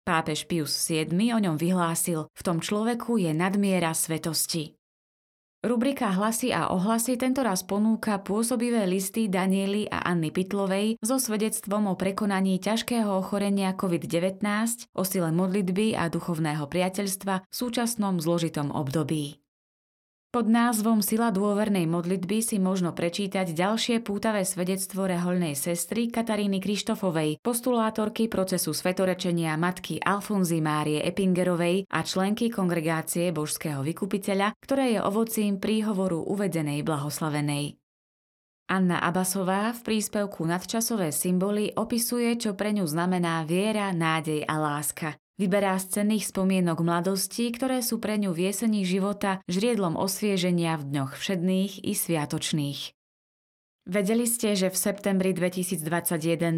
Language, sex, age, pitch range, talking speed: Slovak, female, 20-39, 170-210 Hz, 120 wpm